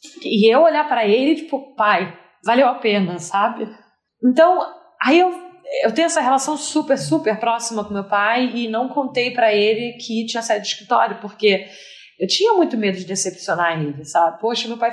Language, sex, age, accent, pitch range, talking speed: Portuguese, female, 20-39, Brazilian, 210-275 Hz, 185 wpm